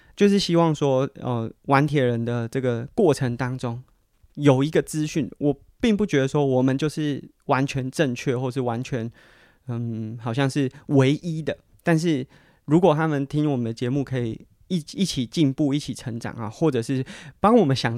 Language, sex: Chinese, male